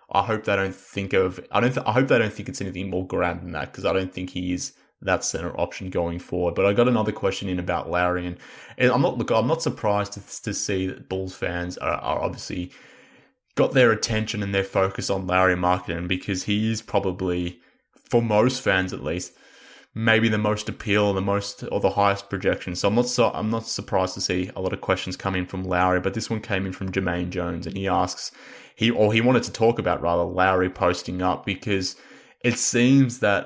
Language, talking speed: English, 230 wpm